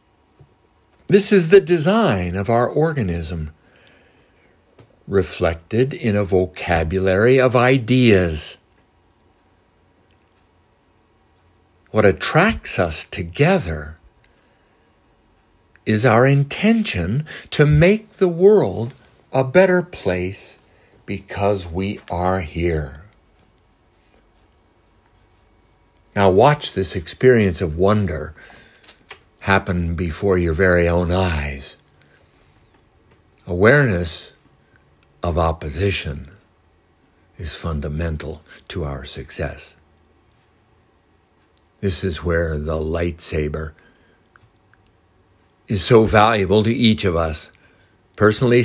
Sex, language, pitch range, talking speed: male, English, 85-110 Hz, 80 wpm